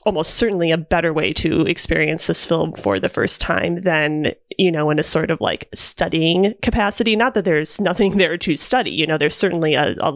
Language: English